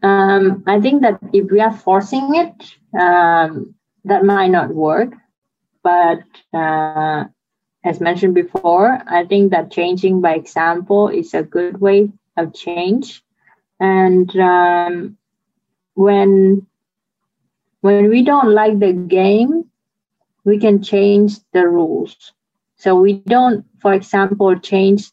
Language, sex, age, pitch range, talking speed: English, female, 20-39, 180-210 Hz, 120 wpm